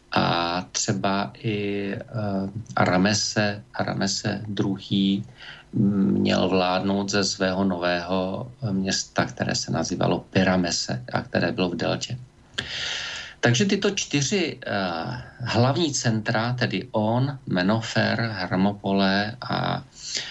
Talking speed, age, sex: 90 wpm, 50-69, male